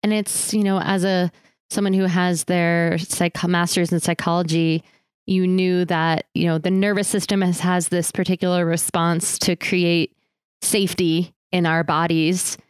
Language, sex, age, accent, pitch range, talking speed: English, female, 20-39, American, 165-190 Hz, 150 wpm